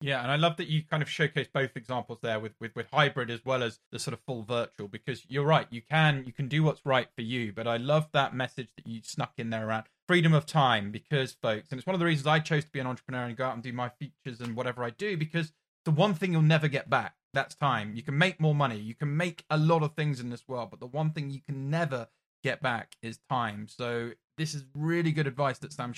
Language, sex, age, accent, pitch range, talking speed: English, male, 20-39, British, 125-160 Hz, 275 wpm